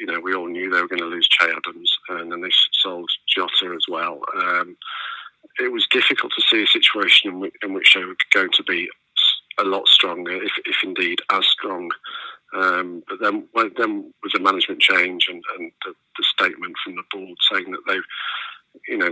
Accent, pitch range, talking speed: British, 320-440 Hz, 205 wpm